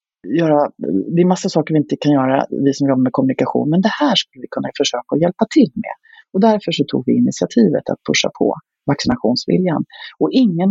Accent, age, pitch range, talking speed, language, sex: native, 40-59, 140-225 Hz, 215 wpm, Swedish, female